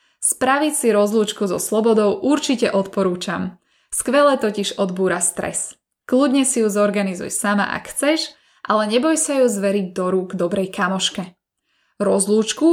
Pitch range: 195-245 Hz